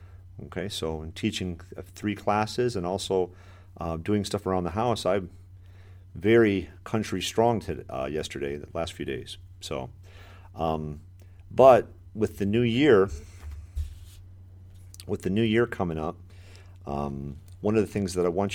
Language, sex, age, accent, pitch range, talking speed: English, male, 40-59, American, 90-105 Hz, 150 wpm